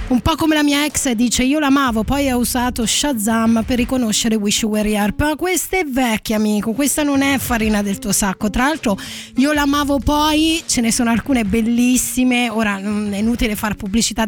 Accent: native